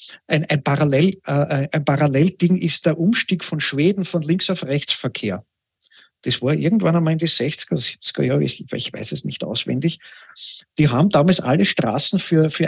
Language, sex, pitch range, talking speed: German, male, 130-170 Hz, 175 wpm